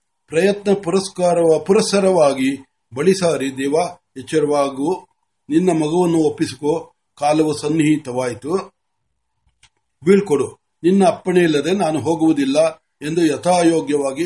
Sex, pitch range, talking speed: male, 145-180 Hz, 40 wpm